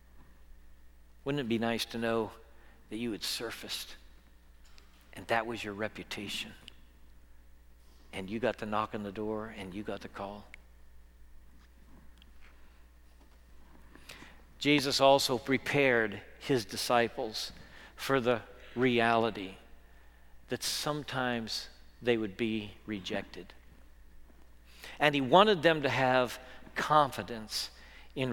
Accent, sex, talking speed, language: American, male, 105 wpm, English